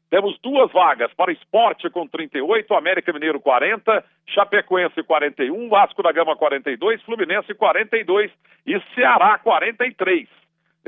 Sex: male